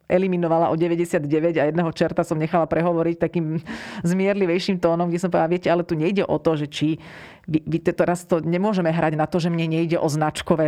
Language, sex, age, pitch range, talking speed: Slovak, female, 40-59, 155-185 Hz, 200 wpm